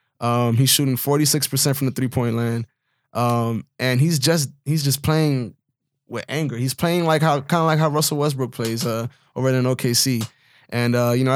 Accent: American